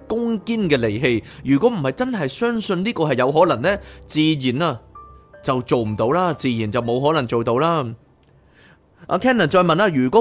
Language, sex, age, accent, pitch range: Chinese, male, 30-49, native, 120-175 Hz